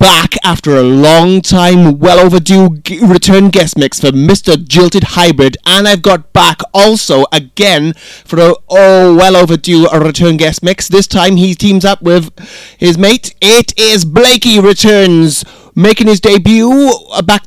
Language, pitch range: English, 160-205 Hz